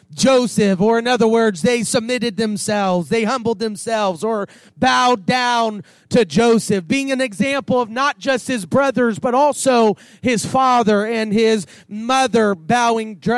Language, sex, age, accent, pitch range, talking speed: English, male, 30-49, American, 200-280 Hz, 145 wpm